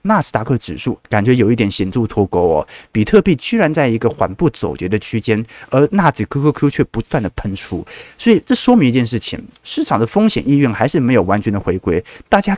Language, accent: Chinese, native